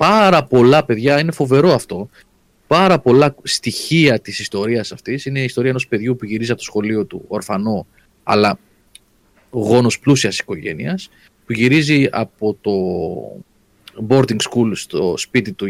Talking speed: 140 wpm